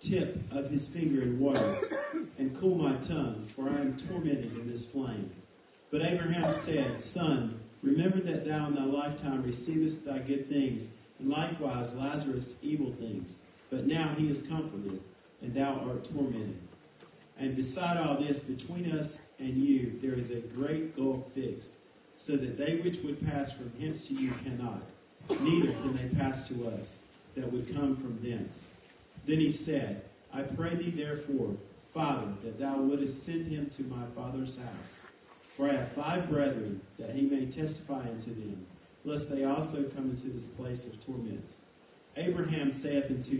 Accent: American